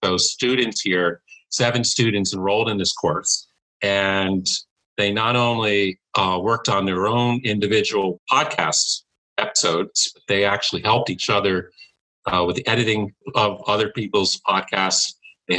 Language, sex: English, male